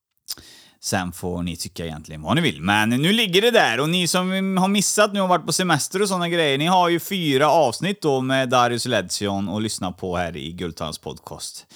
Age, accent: 30-49, native